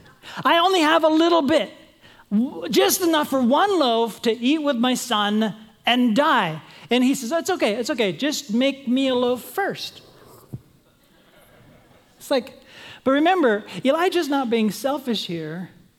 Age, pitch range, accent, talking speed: 40-59, 195-250 Hz, American, 150 wpm